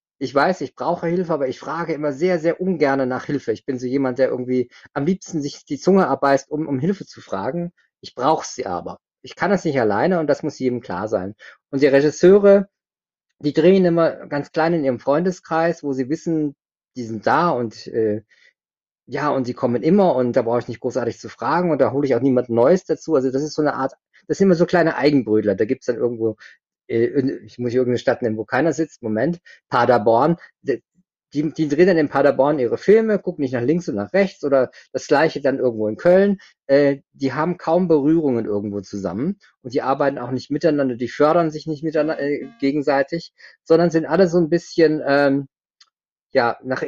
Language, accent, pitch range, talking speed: German, German, 125-160 Hz, 210 wpm